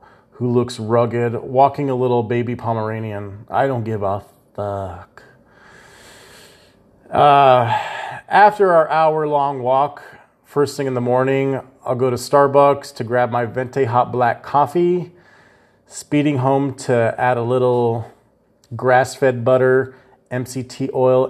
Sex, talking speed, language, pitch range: male, 125 wpm, English, 120-145 Hz